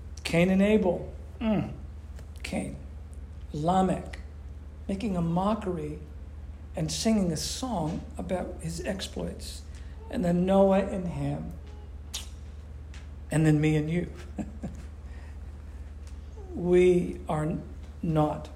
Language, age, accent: English, 60-79, American